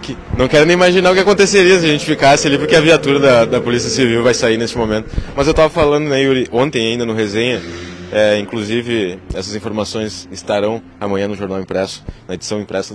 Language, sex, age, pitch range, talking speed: Portuguese, male, 20-39, 105-130 Hz, 205 wpm